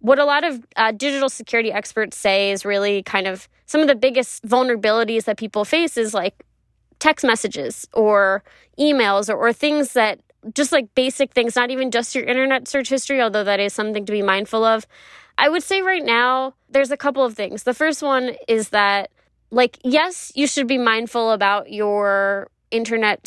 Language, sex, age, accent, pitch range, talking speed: English, female, 20-39, American, 200-245 Hz, 190 wpm